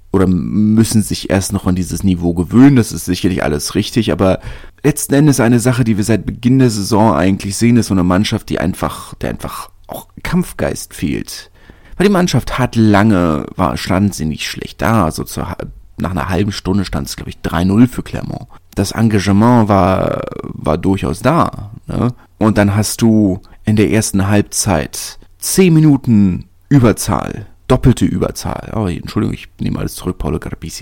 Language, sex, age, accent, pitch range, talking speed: German, male, 30-49, German, 90-120 Hz, 175 wpm